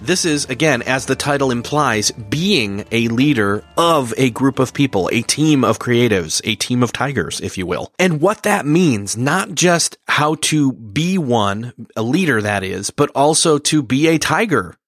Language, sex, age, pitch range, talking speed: English, male, 30-49, 110-150 Hz, 185 wpm